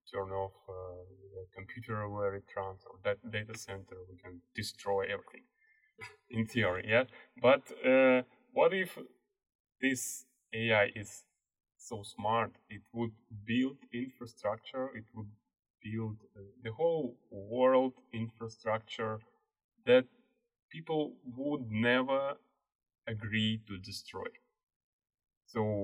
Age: 20-39